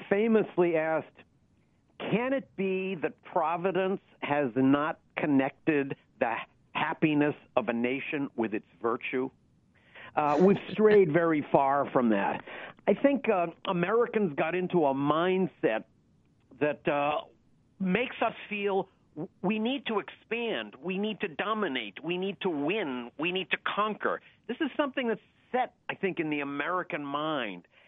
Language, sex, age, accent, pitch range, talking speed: English, male, 50-69, American, 150-210 Hz, 140 wpm